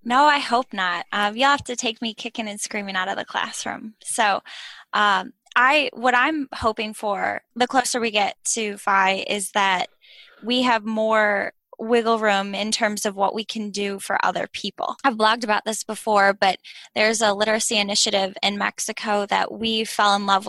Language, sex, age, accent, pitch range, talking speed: English, female, 10-29, American, 195-225 Hz, 185 wpm